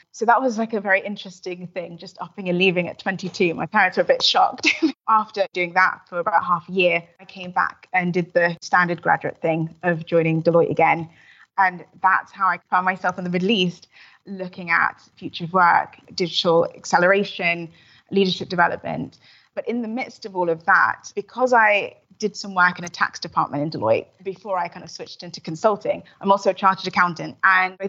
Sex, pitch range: female, 175-200 Hz